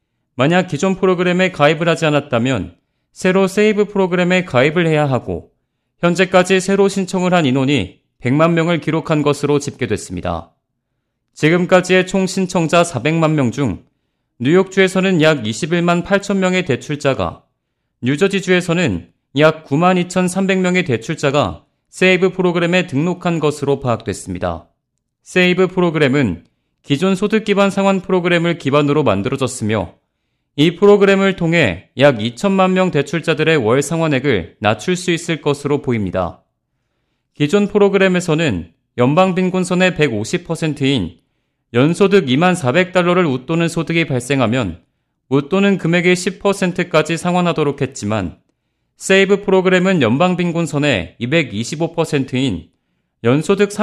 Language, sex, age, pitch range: Korean, male, 40-59, 130-185 Hz